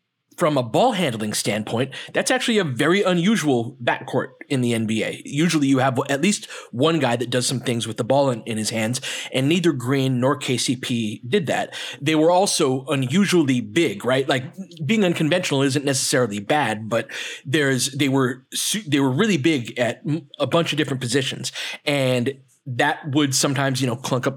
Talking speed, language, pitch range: 180 wpm, English, 130-170 Hz